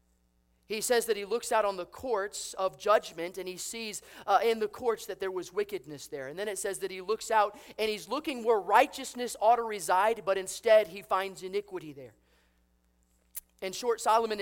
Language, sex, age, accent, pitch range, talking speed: English, male, 30-49, American, 160-220 Hz, 200 wpm